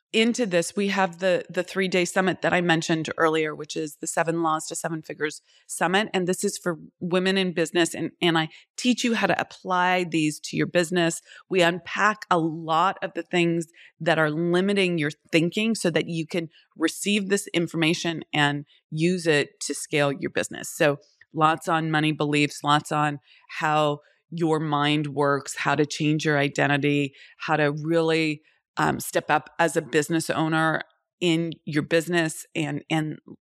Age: 30-49